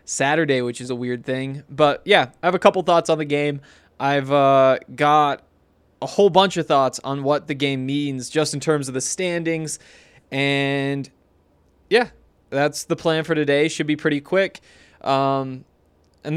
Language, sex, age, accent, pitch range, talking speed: English, male, 20-39, American, 130-160 Hz, 175 wpm